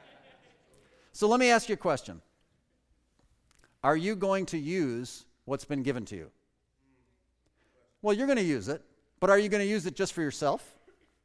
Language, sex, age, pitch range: English, male, 40-59, 160-210 Hz